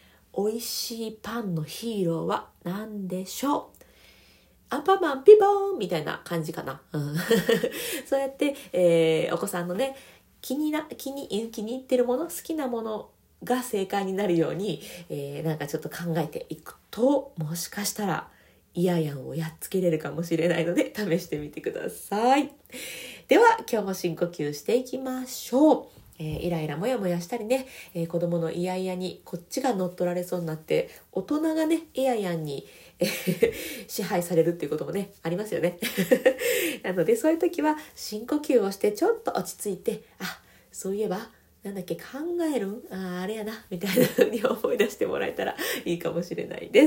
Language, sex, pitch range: Japanese, female, 170-265 Hz